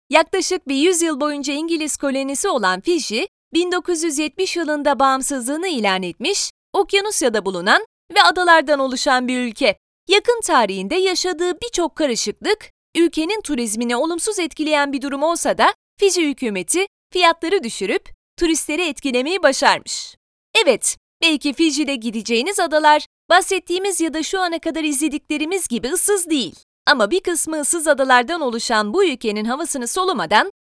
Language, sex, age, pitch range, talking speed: Turkish, female, 30-49, 265-365 Hz, 125 wpm